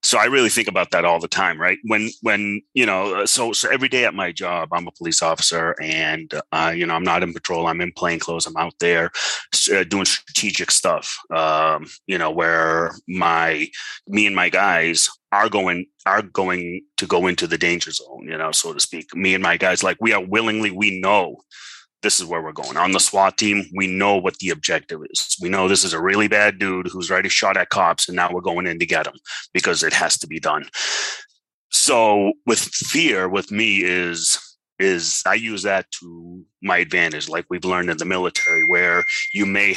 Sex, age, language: male, 30-49, English